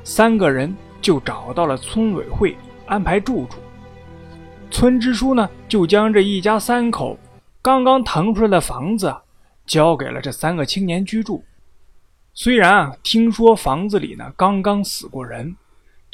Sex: male